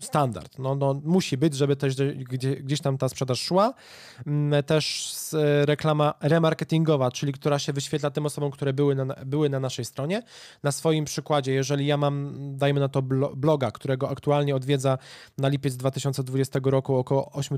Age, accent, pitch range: 20-39, native, 135-155 Hz